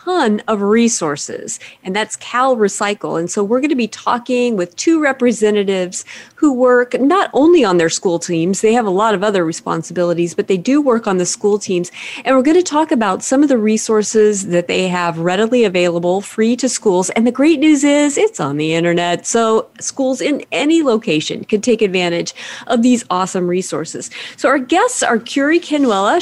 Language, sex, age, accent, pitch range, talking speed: English, female, 30-49, American, 190-255 Hz, 190 wpm